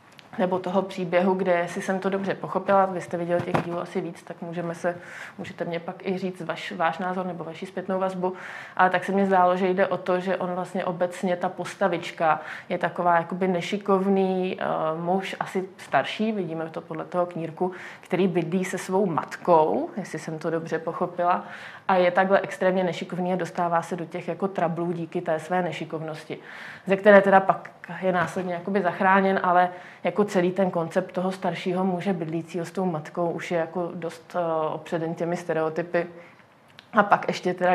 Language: Czech